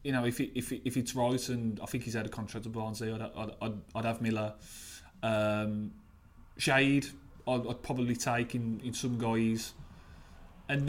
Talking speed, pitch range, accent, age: 195 wpm, 105-130 Hz, British, 20-39